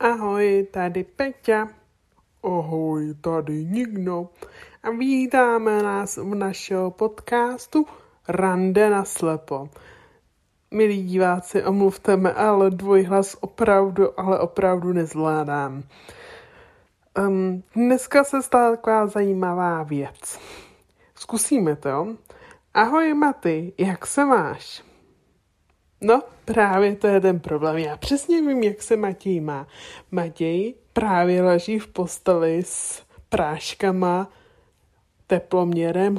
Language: Czech